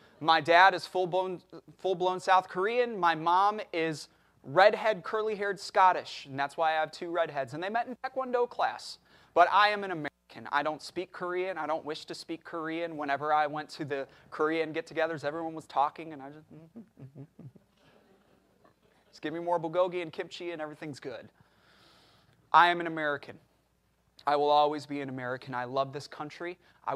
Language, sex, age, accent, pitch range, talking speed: English, male, 30-49, American, 125-180 Hz, 180 wpm